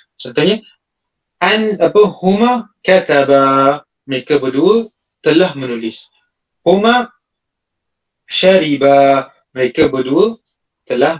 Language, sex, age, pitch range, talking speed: Malay, male, 30-49, 140-210 Hz, 75 wpm